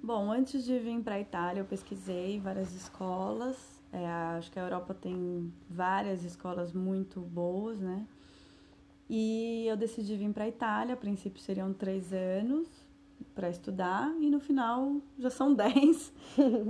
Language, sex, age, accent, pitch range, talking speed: English, female, 20-39, Brazilian, 185-250 Hz, 155 wpm